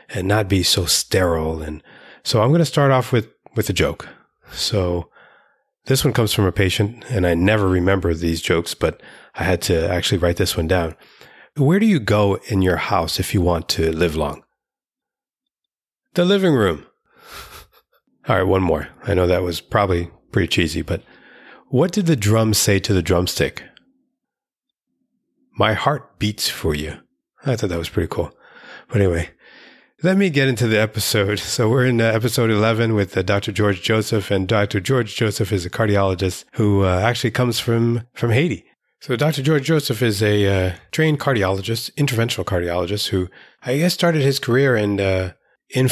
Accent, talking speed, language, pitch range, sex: American, 180 wpm, English, 95-125 Hz, male